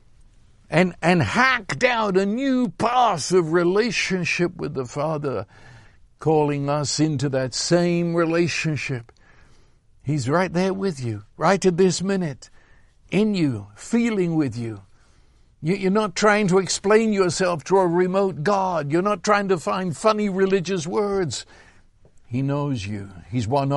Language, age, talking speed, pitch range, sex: English, 60-79, 140 wpm, 130-205 Hz, male